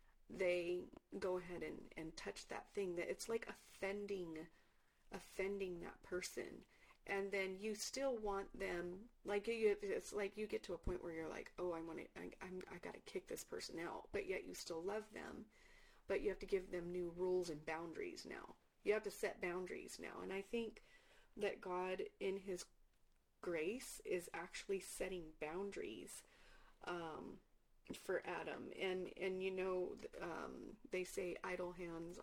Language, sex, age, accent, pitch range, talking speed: English, female, 40-59, American, 180-225 Hz, 175 wpm